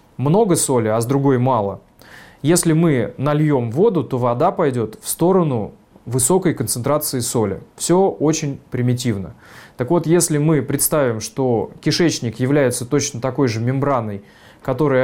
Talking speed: 135 wpm